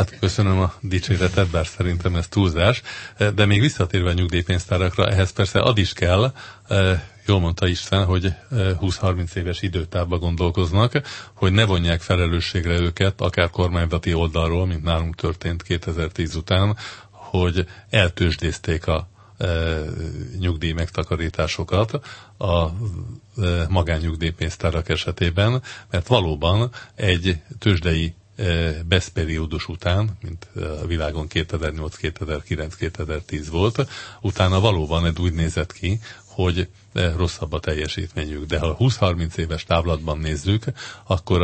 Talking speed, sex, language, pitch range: 110 wpm, male, Hungarian, 85-100 Hz